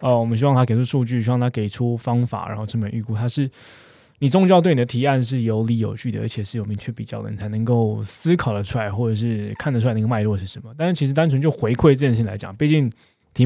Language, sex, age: Chinese, male, 20-39